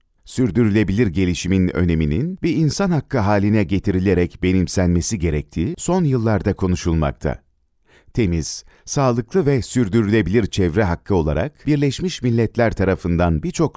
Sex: male